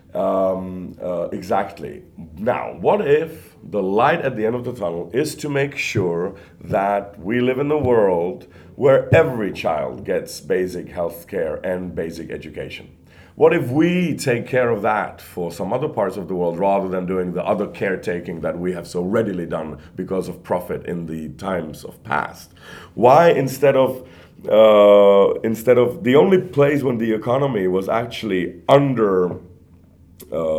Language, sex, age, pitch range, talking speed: Dutch, male, 40-59, 90-130 Hz, 165 wpm